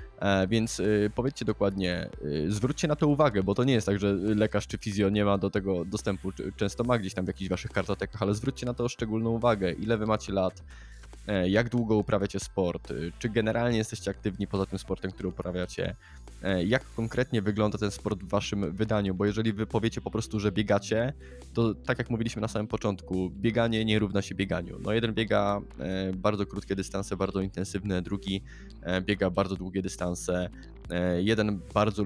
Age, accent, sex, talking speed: 20-39, native, male, 180 wpm